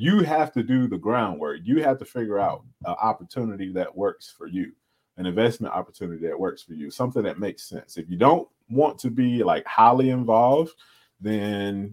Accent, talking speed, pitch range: American, 190 wpm, 110-160 Hz